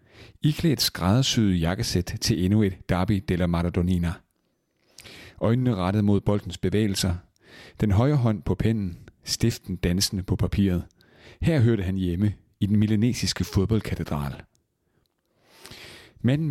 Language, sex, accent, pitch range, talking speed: Danish, male, native, 95-115 Hz, 115 wpm